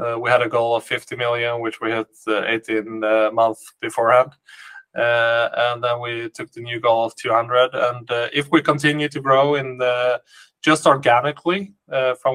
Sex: male